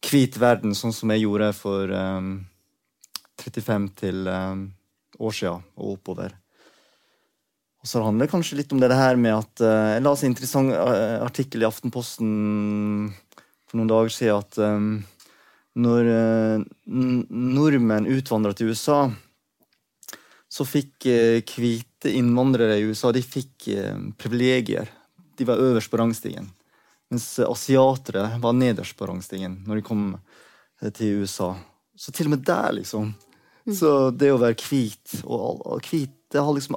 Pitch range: 105-130 Hz